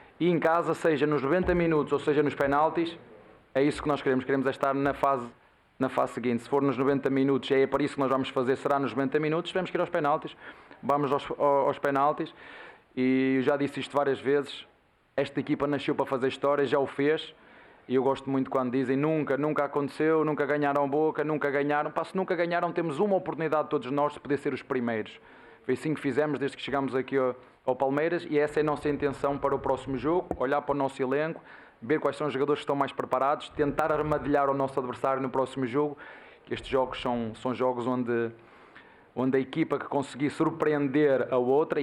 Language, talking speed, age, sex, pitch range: Portuguese, 215 wpm, 20-39, male, 130-150 Hz